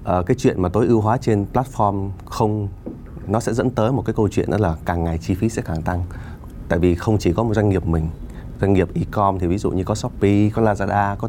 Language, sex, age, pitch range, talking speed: Vietnamese, male, 20-39, 90-110 Hz, 250 wpm